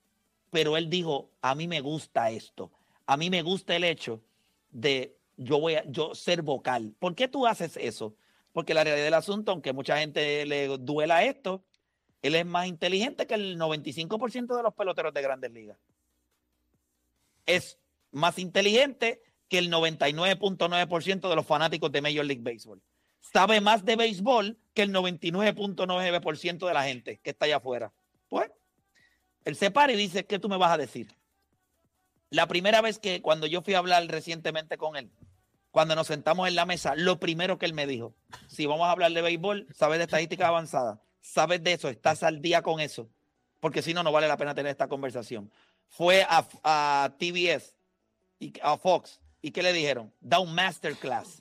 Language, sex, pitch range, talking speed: Spanish, male, 145-185 Hz, 180 wpm